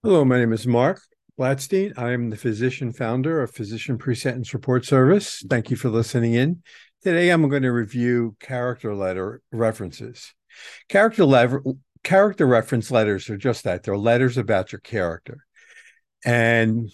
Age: 50-69